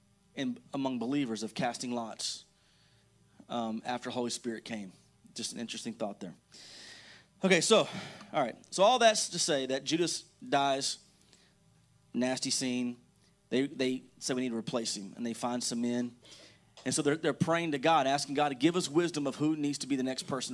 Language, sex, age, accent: English, male, 30-49, American